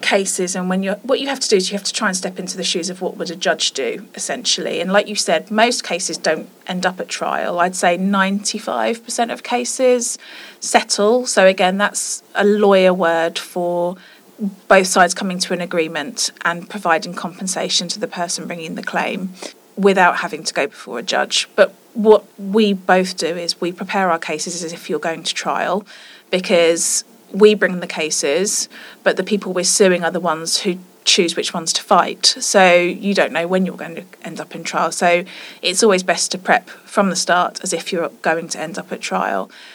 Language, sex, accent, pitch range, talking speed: English, female, British, 175-205 Hz, 205 wpm